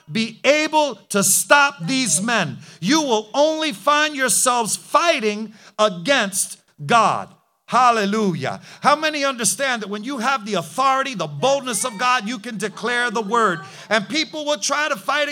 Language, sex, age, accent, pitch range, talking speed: English, male, 50-69, American, 200-275 Hz, 155 wpm